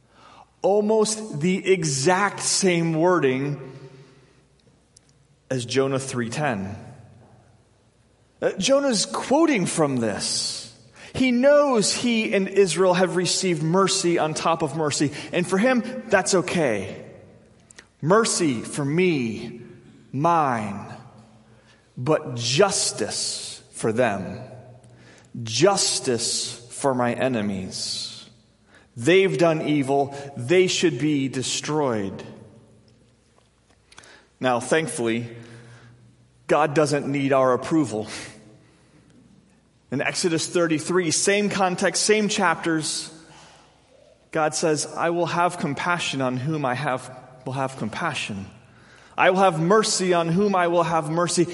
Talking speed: 100 wpm